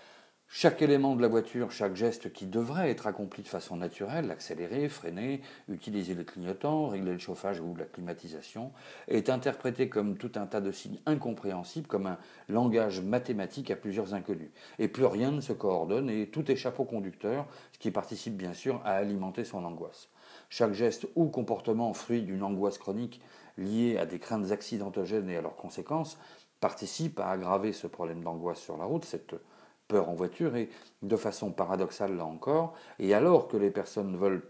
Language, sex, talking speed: French, male, 180 wpm